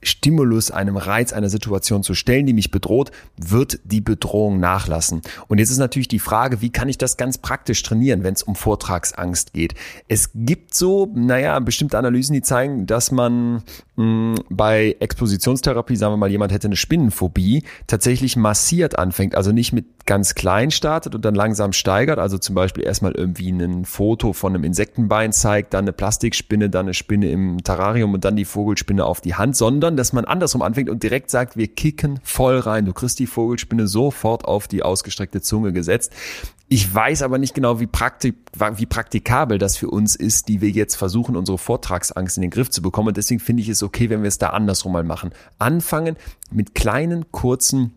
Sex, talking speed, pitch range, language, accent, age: male, 190 wpm, 95-125 Hz, German, German, 30-49